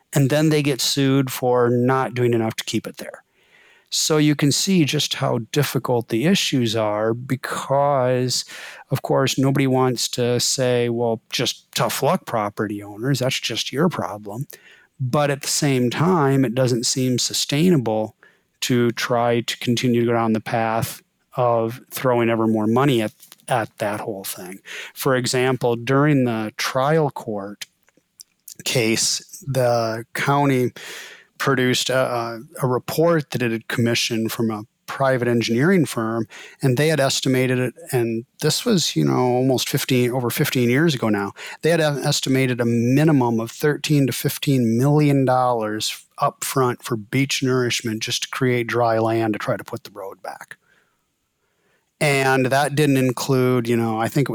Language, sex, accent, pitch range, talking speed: English, male, American, 115-140 Hz, 160 wpm